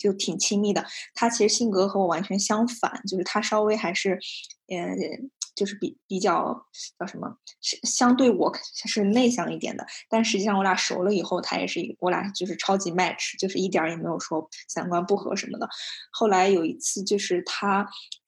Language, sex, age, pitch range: Chinese, female, 20-39, 180-210 Hz